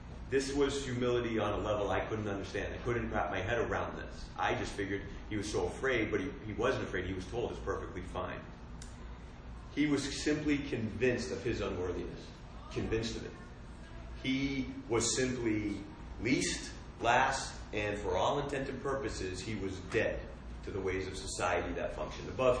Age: 30-49